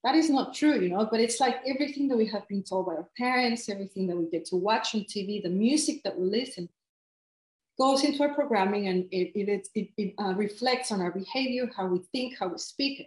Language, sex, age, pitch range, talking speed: English, female, 30-49, 185-235 Hz, 235 wpm